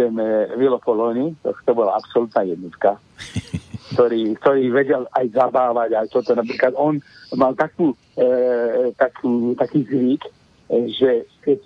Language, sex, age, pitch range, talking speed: Slovak, male, 60-79, 130-175 Hz, 125 wpm